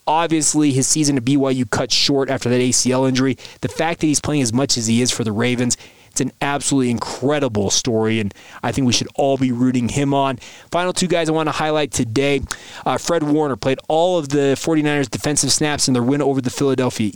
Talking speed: 220 wpm